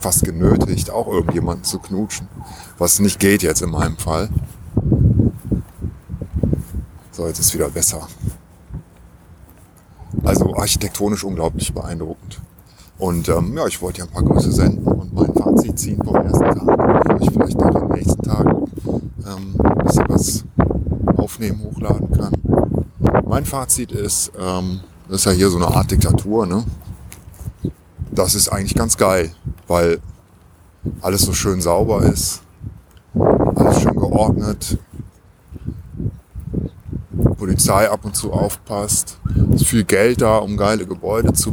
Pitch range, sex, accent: 90-105 Hz, male, German